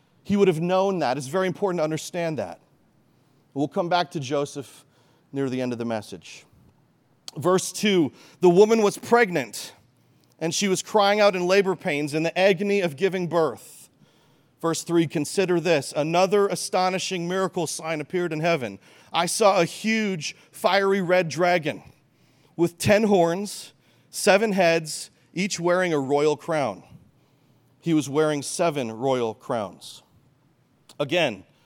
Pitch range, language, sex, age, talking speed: 145-180 Hz, English, male, 40-59, 145 wpm